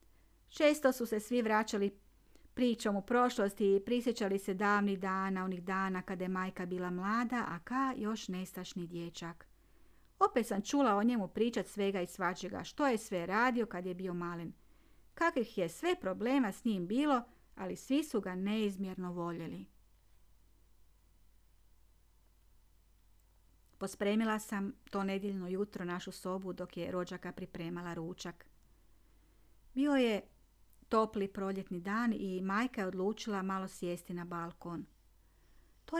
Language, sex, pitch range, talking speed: Croatian, female, 170-210 Hz, 135 wpm